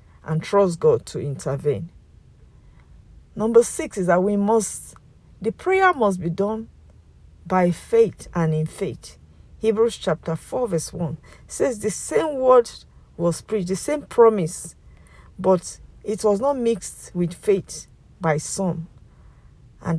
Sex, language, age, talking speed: female, English, 50-69, 135 wpm